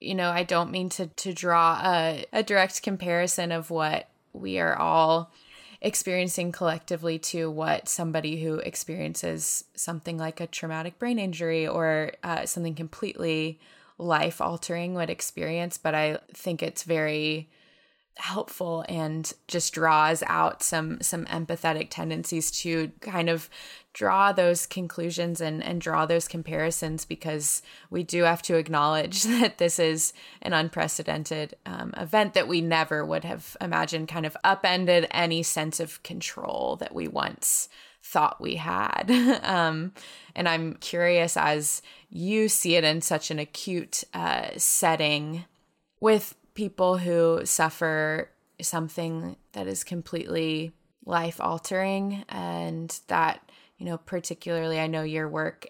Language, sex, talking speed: English, female, 140 wpm